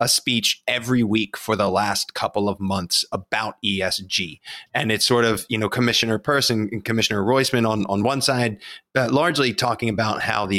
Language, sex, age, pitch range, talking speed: English, male, 30-49, 100-120 Hz, 180 wpm